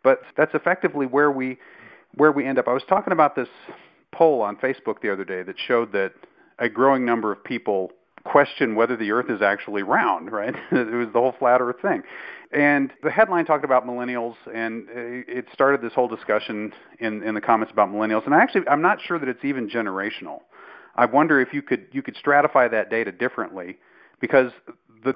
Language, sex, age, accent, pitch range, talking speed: English, male, 40-59, American, 110-135 Hz, 200 wpm